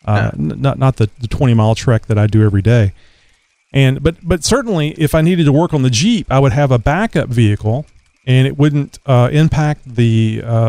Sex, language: male, English